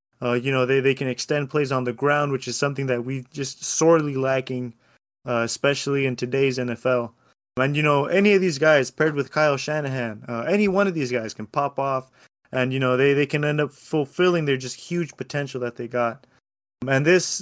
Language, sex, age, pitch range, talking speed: English, male, 20-39, 125-155 Hz, 215 wpm